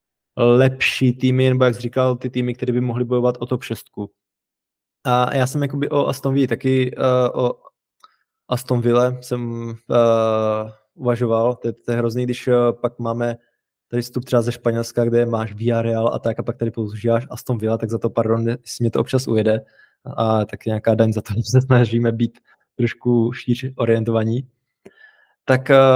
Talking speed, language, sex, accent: 180 wpm, Czech, male, native